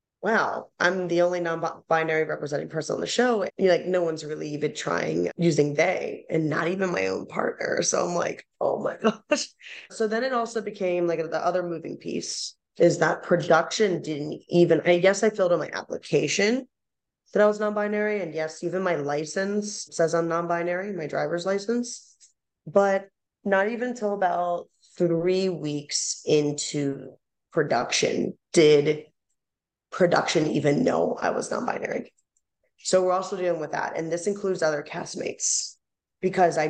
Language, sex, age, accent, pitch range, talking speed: English, female, 20-39, American, 155-200 Hz, 160 wpm